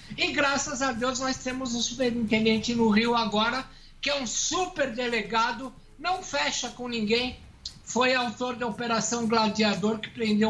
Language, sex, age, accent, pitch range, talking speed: Portuguese, male, 60-79, Brazilian, 190-245 Hz, 155 wpm